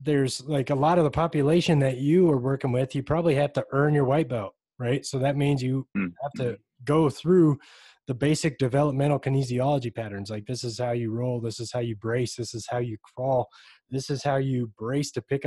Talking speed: 220 wpm